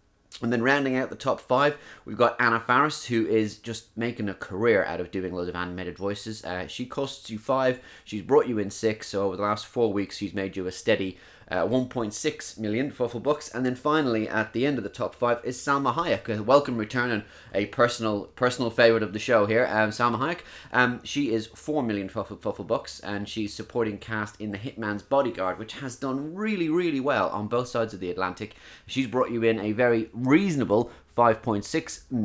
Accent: British